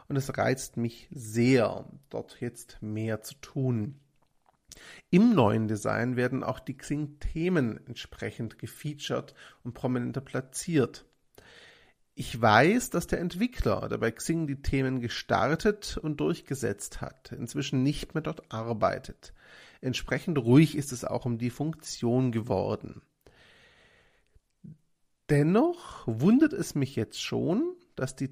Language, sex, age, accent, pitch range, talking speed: German, male, 40-59, German, 120-165 Hz, 125 wpm